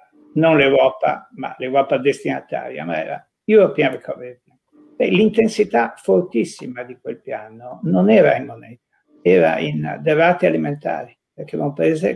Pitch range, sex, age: 135-180 Hz, male, 50-69